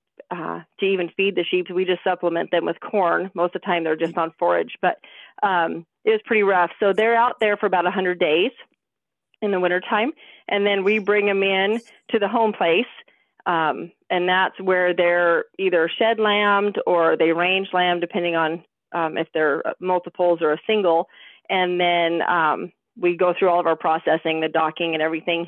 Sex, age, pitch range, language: female, 40-59, 165-200 Hz, English